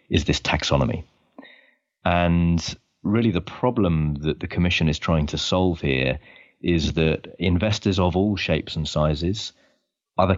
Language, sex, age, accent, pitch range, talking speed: English, male, 30-49, British, 75-90 Hz, 140 wpm